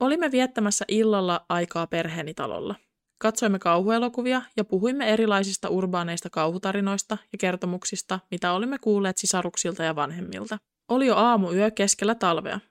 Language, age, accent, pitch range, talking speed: Finnish, 20-39, native, 180-230 Hz, 125 wpm